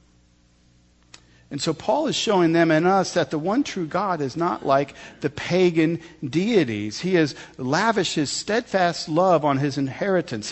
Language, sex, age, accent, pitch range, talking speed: English, male, 50-69, American, 130-175 Hz, 160 wpm